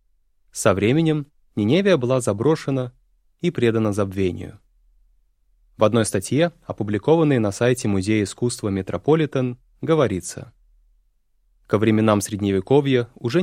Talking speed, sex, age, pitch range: 100 wpm, male, 20-39, 100-135 Hz